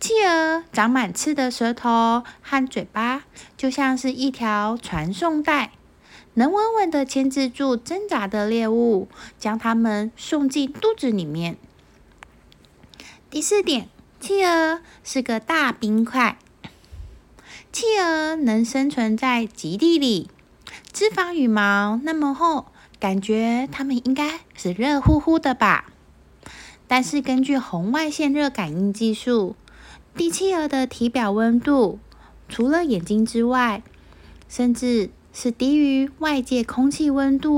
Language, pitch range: Chinese, 215-300 Hz